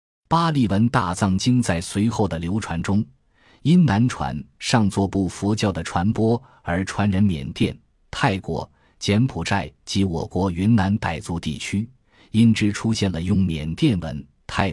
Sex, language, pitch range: male, Chinese, 85-110 Hz